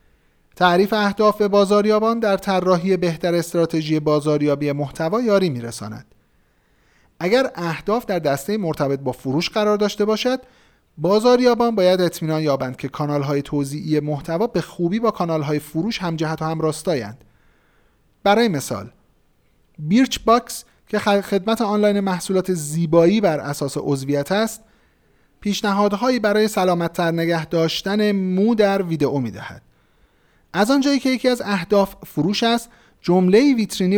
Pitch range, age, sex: 150-210 Hz, 40-59, male